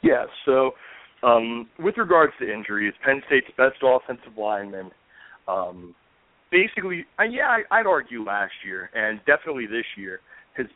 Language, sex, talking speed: English, male, 135 wpm